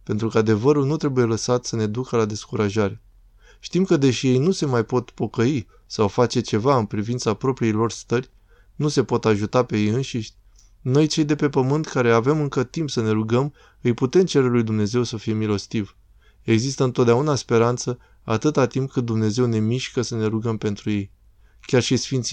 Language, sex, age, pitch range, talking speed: Romanian, male, 20-39, 110-130 Hz, 190 wpm